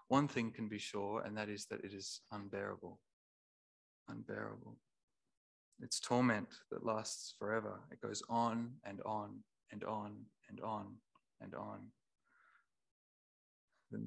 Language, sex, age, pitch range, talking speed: English, male, 20-39, 100-120 Hz, 130 wpm